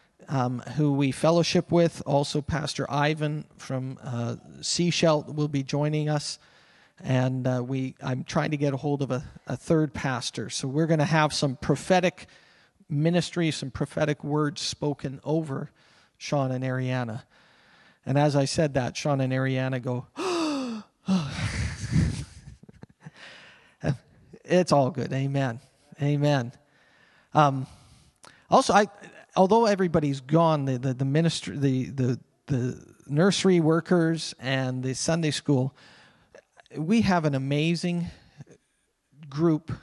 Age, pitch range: 40-59, 135-160 Hz